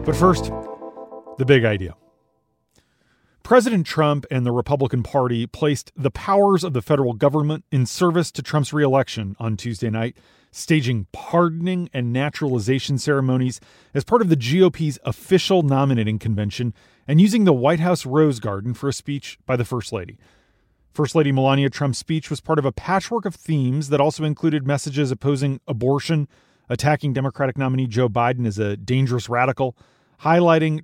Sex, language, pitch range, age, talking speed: male, English, 120-155 Hz, 30-49, 160 wpm